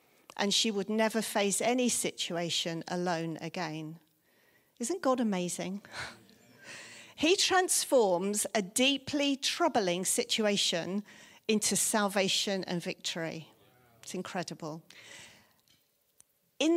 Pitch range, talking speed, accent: 180-250 Hz, 90 wpm, British